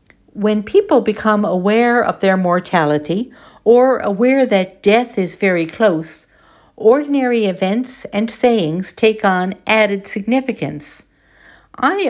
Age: 60-79